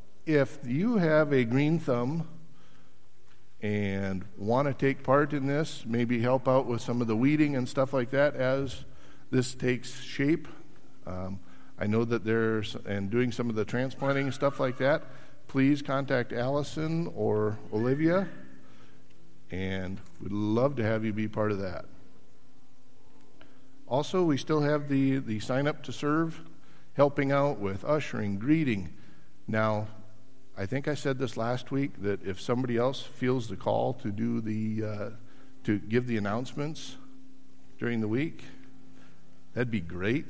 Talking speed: 155 wpm